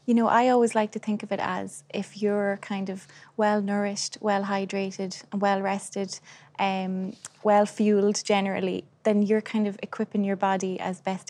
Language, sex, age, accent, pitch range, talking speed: English, female, 20-39, Irish, 190-220 Hz, 160 wpm